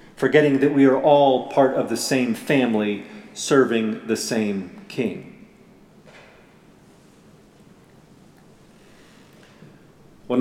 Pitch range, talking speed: 130-180 Hz, 85 wpm